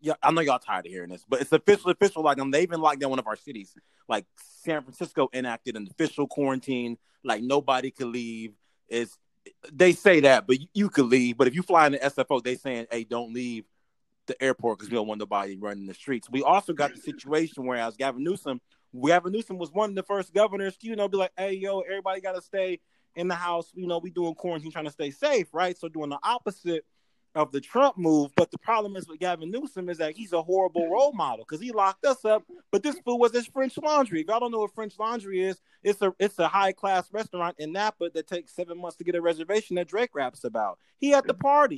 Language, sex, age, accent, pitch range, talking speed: English, male, 30-49, American, 145-200 Hz, 245 wpm